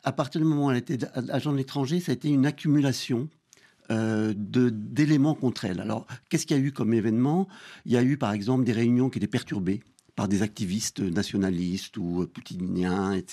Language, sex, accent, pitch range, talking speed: French, male, French, 105-140 Hz, 205 wpm